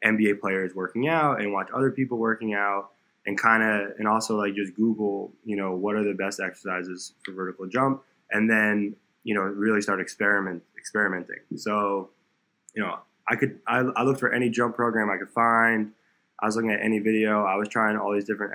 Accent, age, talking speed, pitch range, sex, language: American, 20-39, 205 wpm, 95-110 Hz, male, English